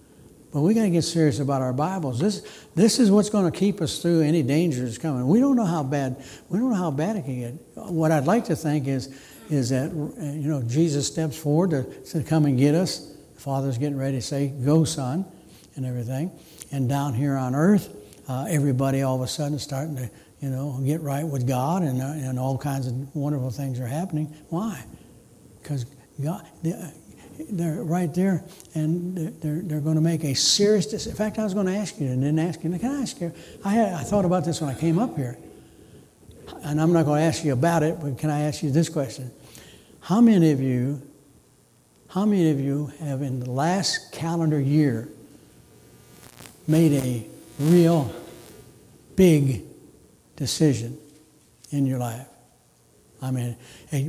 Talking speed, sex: 195 wpm, male